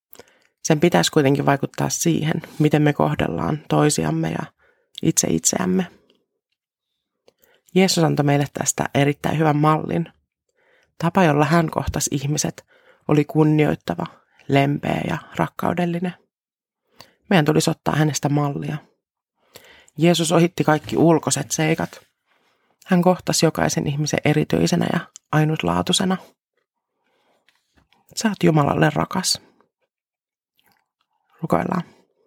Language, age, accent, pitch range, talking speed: Finnish, 30-49, native, 145-175 Hz, 95 wpm